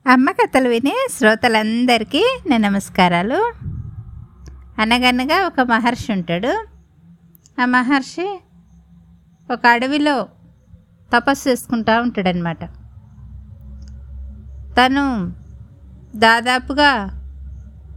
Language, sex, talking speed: Telugu, female, 65 wpm